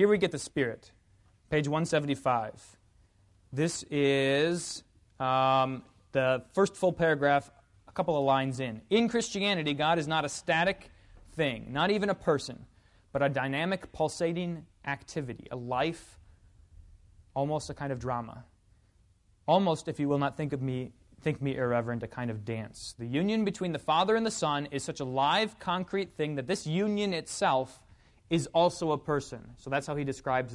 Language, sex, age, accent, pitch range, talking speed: English, male, 20-39, American, 120-165 Hz, 165 wpm